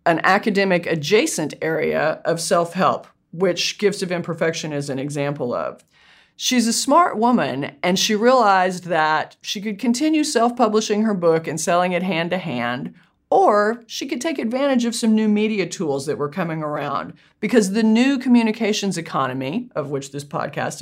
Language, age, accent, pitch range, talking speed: English, 40-59, American, 160-210 Hz, 160 wpm